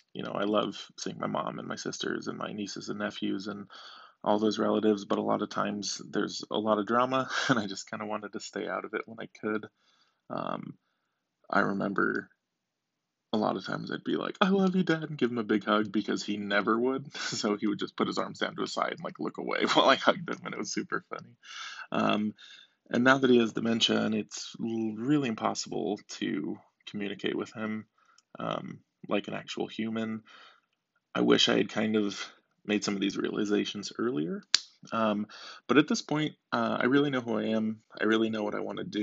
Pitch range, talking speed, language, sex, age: 105-115 Hz, 220 wpm, English, male, 20-39